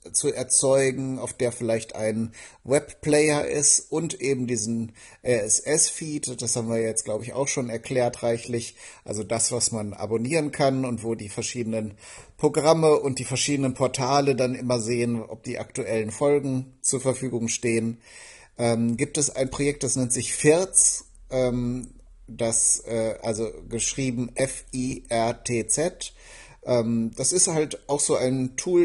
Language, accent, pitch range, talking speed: German, German, 120-140 Hz, 140 wpm